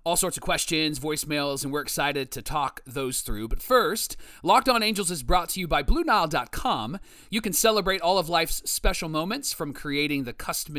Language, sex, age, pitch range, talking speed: English, male, 30-49, 150-195 Hz, 195 wpm